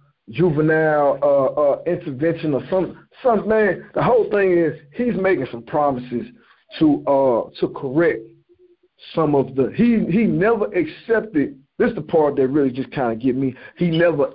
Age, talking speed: 50-69, 165 wpm